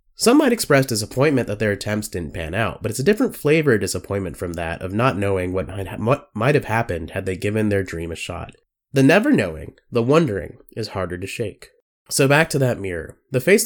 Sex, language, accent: male, English, American